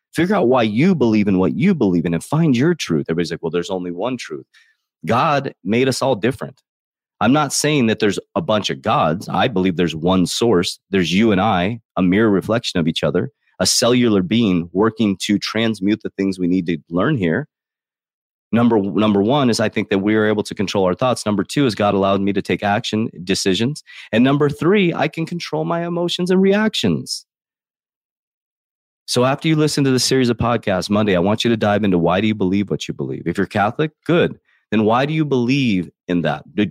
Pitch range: 95-130 Hz